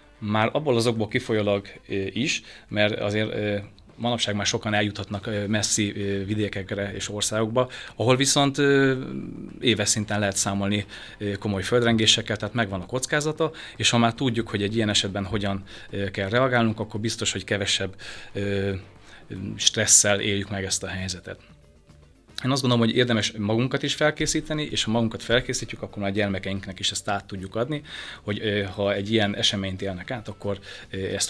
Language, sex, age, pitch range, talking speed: Hungarian, male, 30-49, 100-115 Hz, 150 wpm